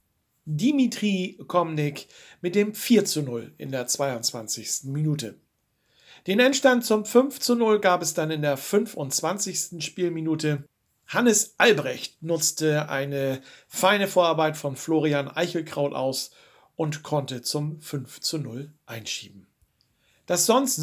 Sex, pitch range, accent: male, 140-190 Hz, German